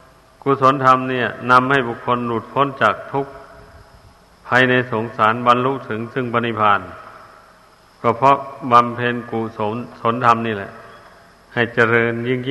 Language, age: Thai, 60-79